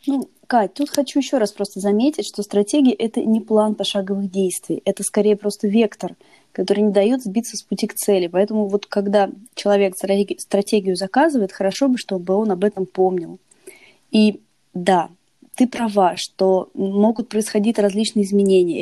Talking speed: 155 wpm